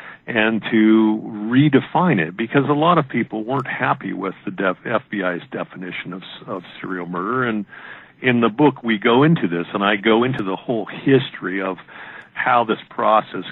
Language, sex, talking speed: English, male, 175 wpm